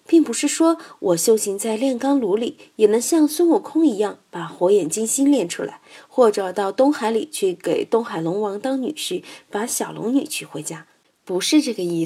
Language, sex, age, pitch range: Chinese, female, 20-39, 175-275 Hz